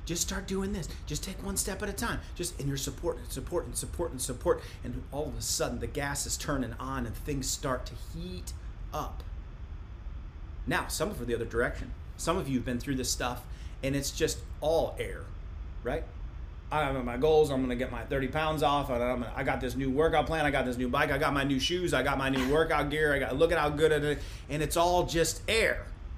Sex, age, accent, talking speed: male, 30-49, American, 245 wpm